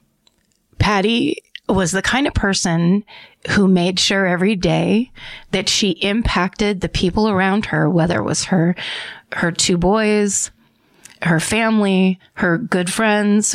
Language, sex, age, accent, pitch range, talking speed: English, female, 30-49, American, 165-200 Hz, 135 wpm